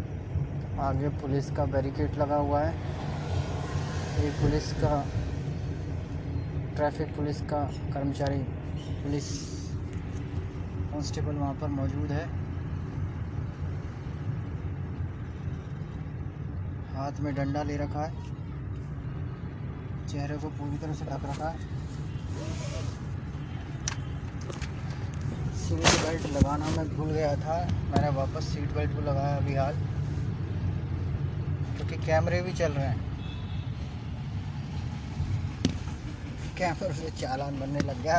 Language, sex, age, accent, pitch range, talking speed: Hindi, male, 20-39, native, 105-145 Hz, 95 wpm